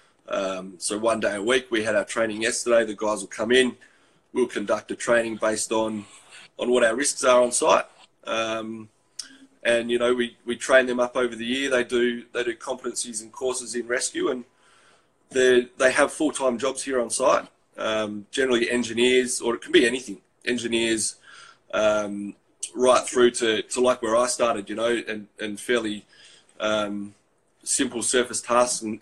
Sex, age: male, 20-39